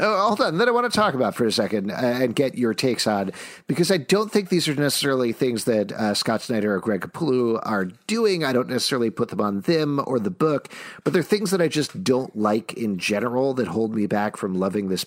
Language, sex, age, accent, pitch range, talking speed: English, male, 50-69, American, 105-150 Hz, 245 wpm